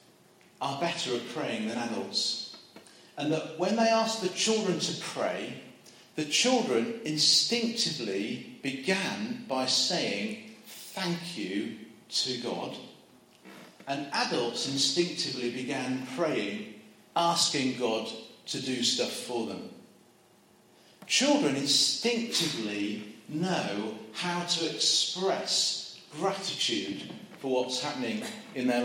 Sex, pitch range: male, 130-175 Hz